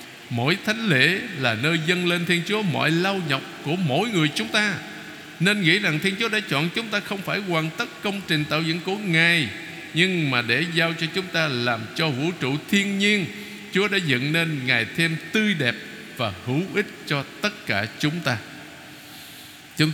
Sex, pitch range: male, 140-185 Hz